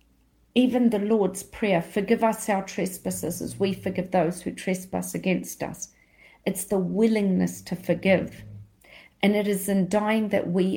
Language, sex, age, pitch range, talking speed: English, female, 40-59, 180-215 Hz, 155 wpm